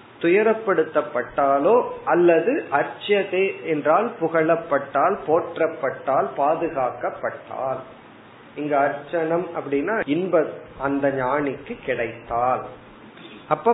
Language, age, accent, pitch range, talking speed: Tamil, 40-59, native, 135-190 Hz, 65 wpm